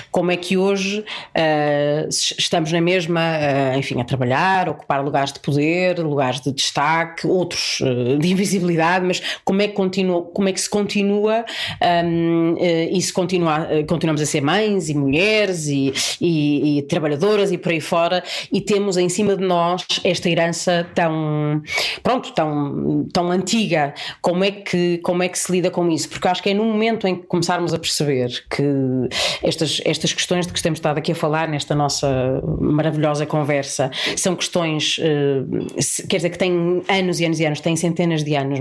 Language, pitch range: Portuguese, 150-180 Hz